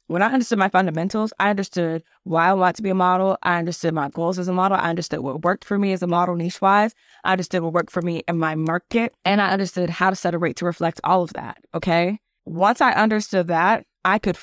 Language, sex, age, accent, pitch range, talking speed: English, female, 20-39, American, 165-190 Hz, 255 wpm